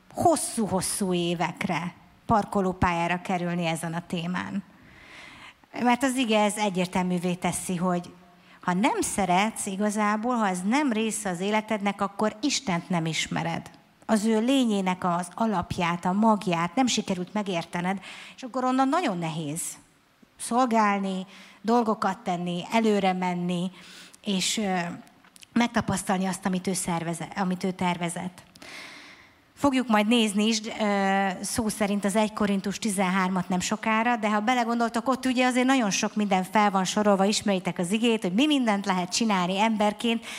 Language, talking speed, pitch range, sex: Hungarian, 130 wpm, 180-225 Hz, female